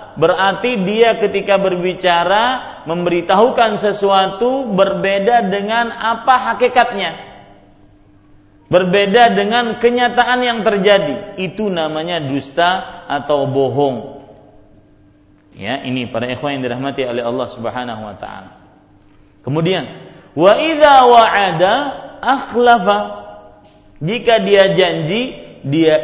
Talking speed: 90 wpm